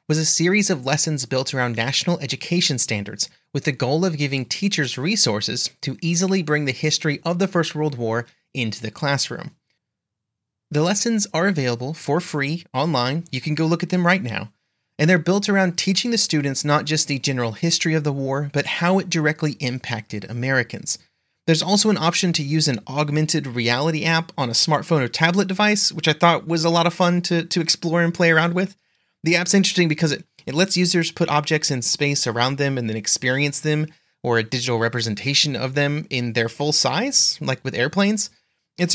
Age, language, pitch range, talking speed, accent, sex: 30-49, English, 125-170 Hz, 200 wpm, American, male